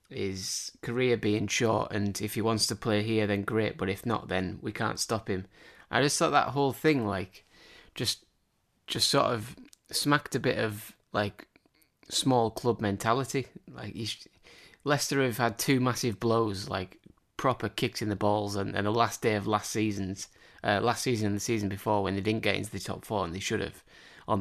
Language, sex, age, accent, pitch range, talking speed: English, male, 20-39, British, 100-120 Hz, 200 wpm